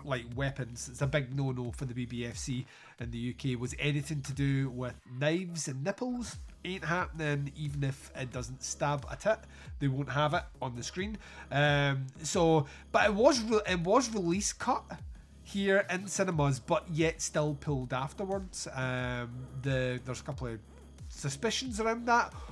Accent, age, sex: British, 30-49, male